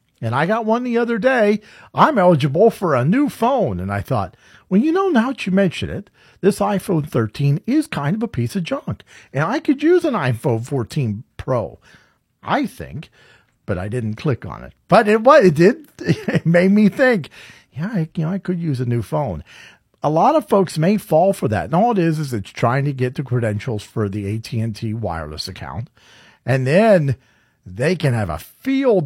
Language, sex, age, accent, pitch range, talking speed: English, male, 50-69, American, 125-195 Hz, 210 wpm